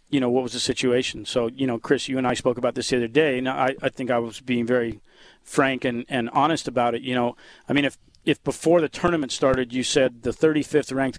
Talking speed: 250 wpm